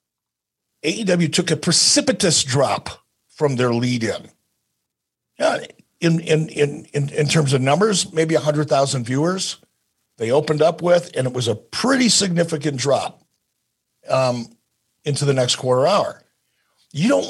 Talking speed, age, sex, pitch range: 135 wpm, 50-69, male, 140-195 Hz